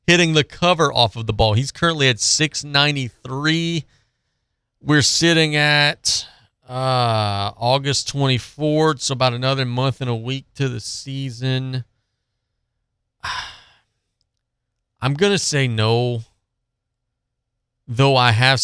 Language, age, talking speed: English, 40-59, 115 wpm